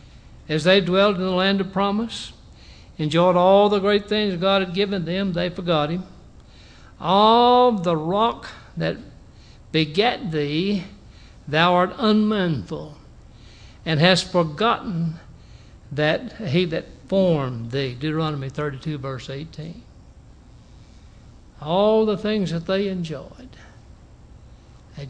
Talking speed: 115 wpm